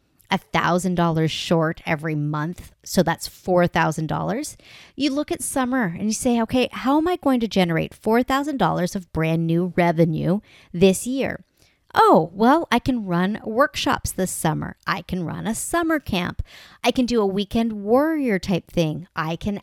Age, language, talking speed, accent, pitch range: 40-59, English, 155 wpm, American, 175-250 Hz